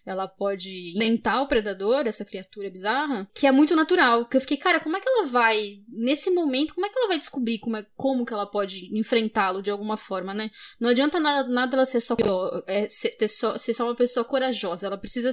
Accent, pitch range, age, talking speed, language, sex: Brazilian, 225-280 Hz, 10-29, 225 wpm, English, female